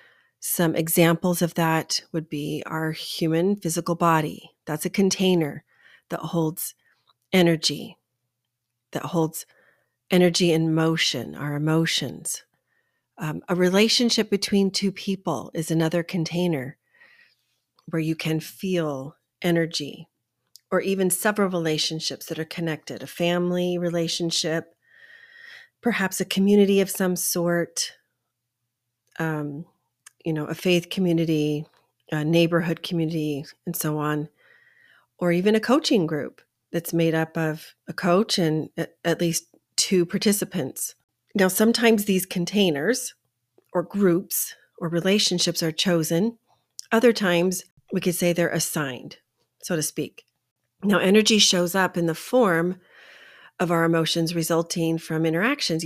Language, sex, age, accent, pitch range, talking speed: English, female, 40-59, American, 160-185 Hz, 120 wpm